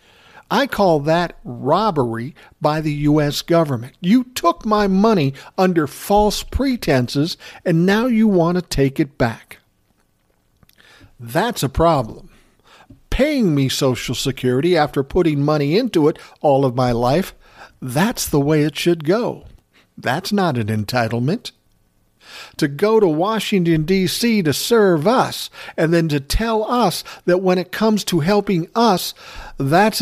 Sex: male